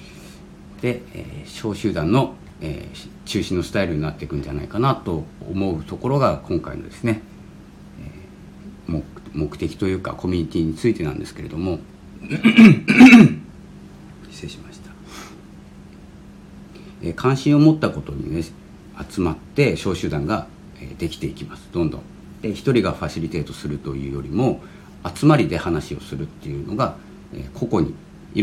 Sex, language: male, Japanese